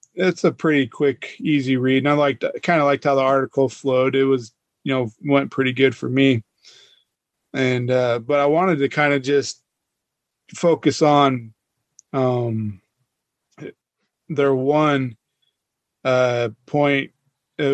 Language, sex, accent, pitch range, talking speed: English, male, American, 130-145 Hz, 145 wpm